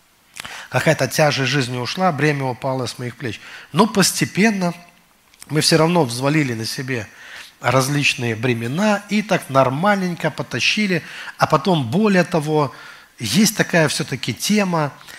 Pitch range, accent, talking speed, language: 125-165 Hz, native, 120 wpm, Russian